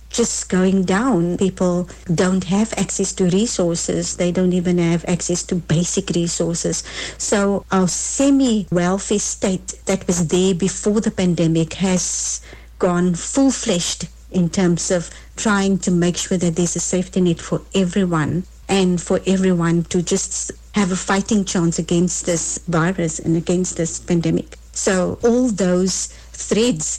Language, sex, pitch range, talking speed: English, female, 170-200 Hz, 140 wpm